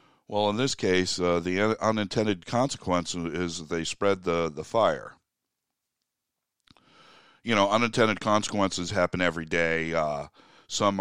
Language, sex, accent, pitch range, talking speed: English, male, American, 85-105 Hz, 125 wpm